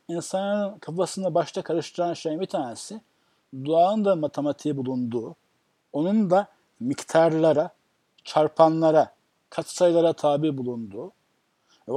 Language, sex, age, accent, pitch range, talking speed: Turkish, male, 60-79, native, 155-190 Hz, 100 wpm